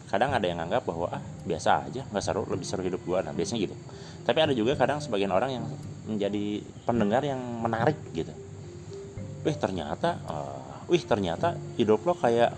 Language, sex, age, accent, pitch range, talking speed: Indonesian, male, 30-49, native, 95-115 Hz, 170 wpm